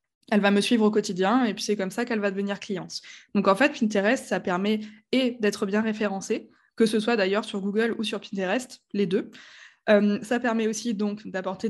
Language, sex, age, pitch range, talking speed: French, female, 20-39, 200-235 Hz, 215 wpm